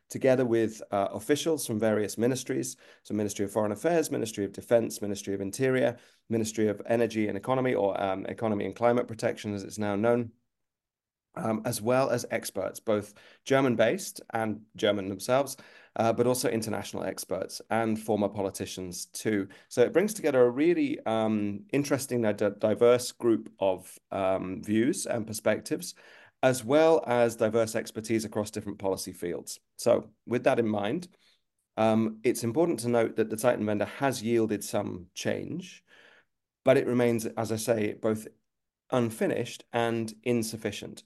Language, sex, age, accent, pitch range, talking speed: English, male, 30-49, British, 105-120 Hz, 155 wpm